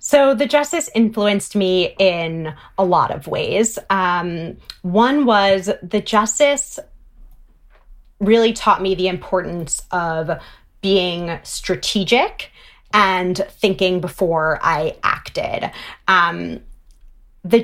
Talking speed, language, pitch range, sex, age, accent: 100 wpm, English, 180-210 Hz, female, 30-49, American